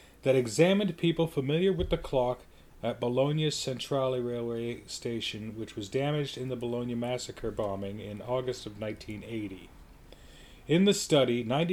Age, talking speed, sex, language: 40-59, 125 wpm, male, English